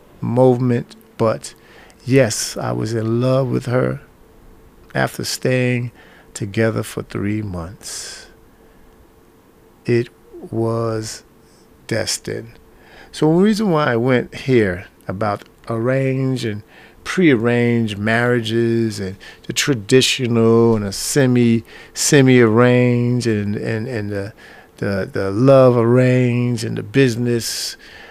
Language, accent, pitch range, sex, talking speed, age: English, American, 110-130 Hz, male, 105 wpm, 50-69